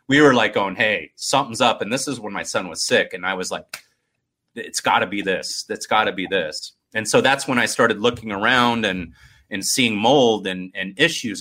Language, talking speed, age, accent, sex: English, 235 wpm, 30-49, American, male